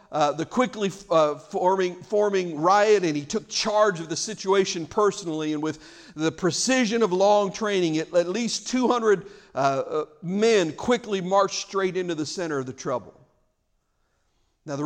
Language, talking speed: English, 155 wpm